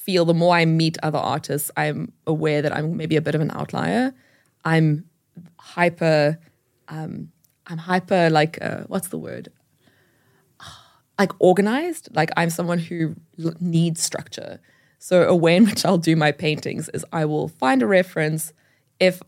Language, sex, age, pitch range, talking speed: English, female, 20-39, 155-215 Hz, 160 wpm